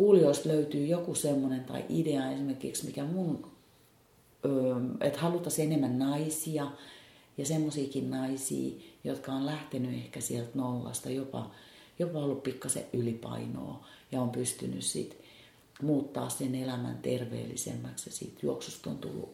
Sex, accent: female, native